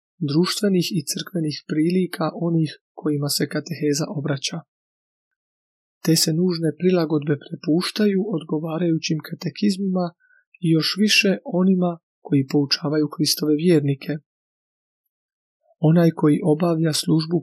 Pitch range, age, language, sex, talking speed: 150-180 Hz, 30-49, Croatian, male, 95 wpm